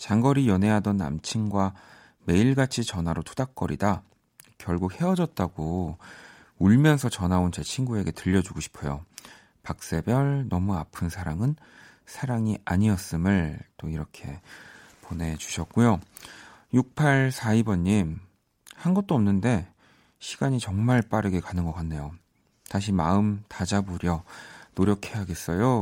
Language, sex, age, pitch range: Korean, male, 40-59, 90-120 Hz